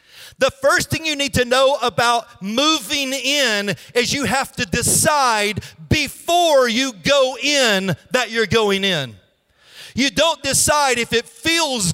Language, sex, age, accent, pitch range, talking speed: English, male, 40-59, American, 230-280 Hz, 145 wpm